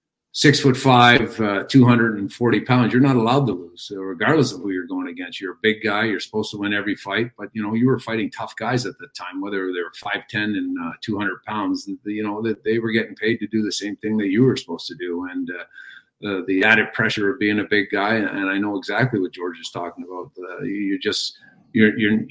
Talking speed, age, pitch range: 240 wpm, 50-69, 100-125 Hz